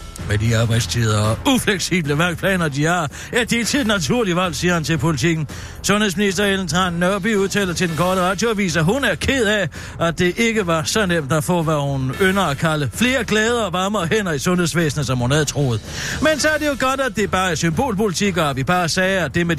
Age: 60-79